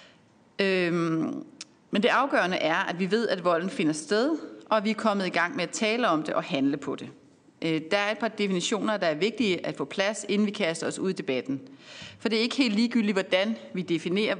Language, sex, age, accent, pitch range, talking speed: Danish, female, 30-49, native, 165-220 Hz, 220 wpm